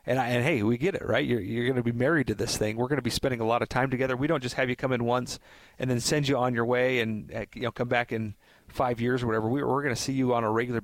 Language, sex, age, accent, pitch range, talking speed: English, male, 40-59, American, 115-135 Hz, 330 wpm